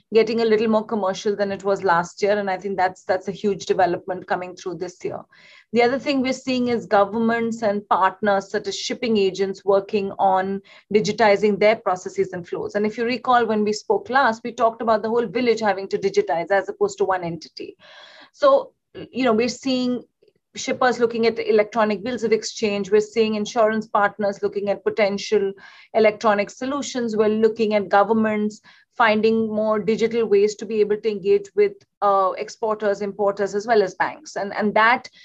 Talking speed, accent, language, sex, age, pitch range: 185 wpm, Indian, English, female, 30-49, 200-230 Hz